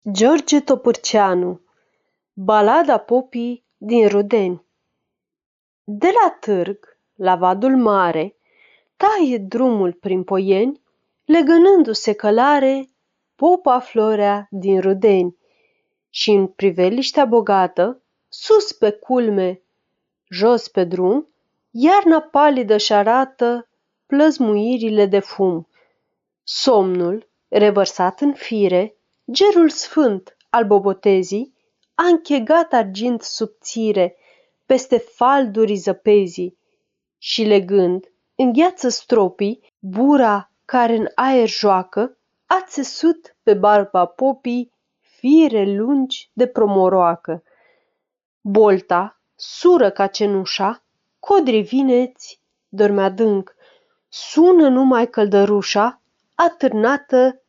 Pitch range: 200-275 Hz